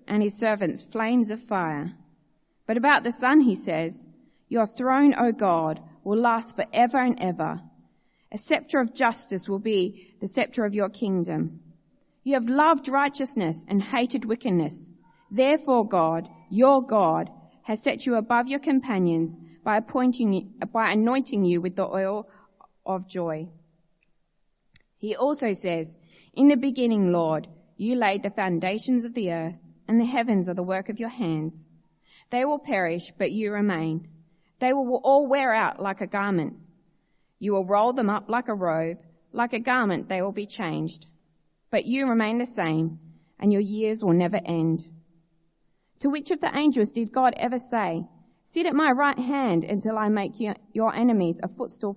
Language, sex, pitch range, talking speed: English, female, 175-245 Hz, 165 wpm